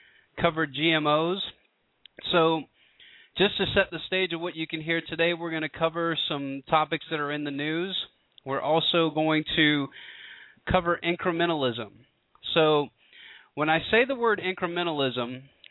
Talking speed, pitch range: 145 wpm, 135-165 Hz